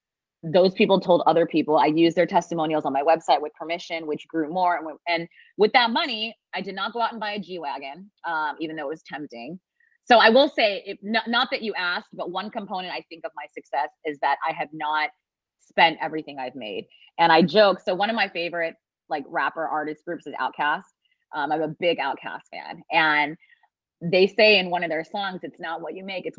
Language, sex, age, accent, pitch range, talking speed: English, female, 30-49, American, 155-200 Hz, 225 wpm